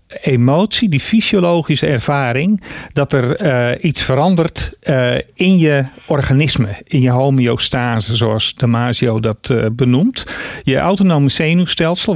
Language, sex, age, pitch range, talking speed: Dutch, male, 50-69, 125-180 Hz, 115 wpm